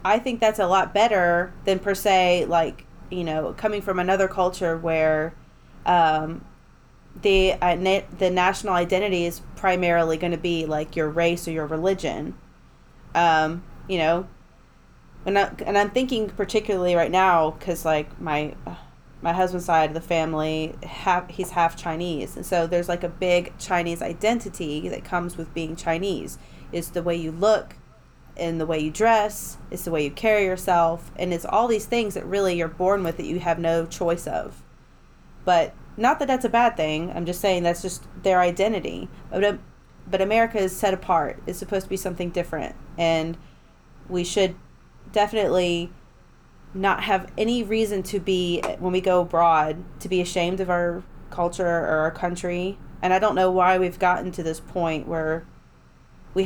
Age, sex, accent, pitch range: 30-49, female, American, 165-190 Hz